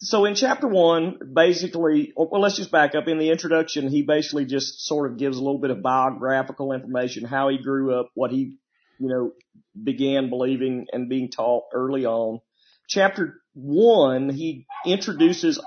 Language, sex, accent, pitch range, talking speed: English, male, American, 130-165 Hz, 170 wpm